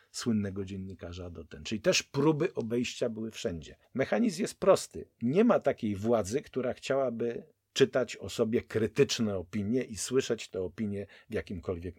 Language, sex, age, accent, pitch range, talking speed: Polish, male, 50-69, native, 95-120 Hz, 150 wpm